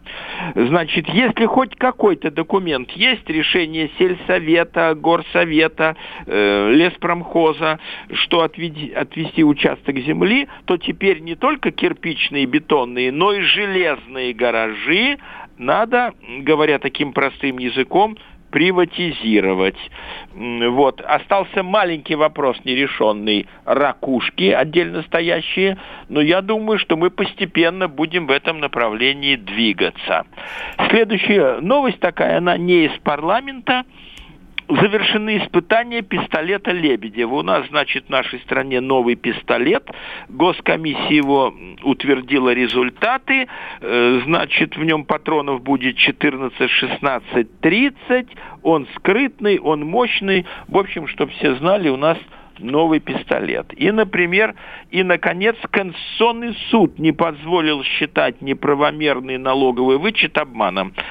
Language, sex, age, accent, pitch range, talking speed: Russian, male, 50-69, native, 140-205 Hz, 105 wpm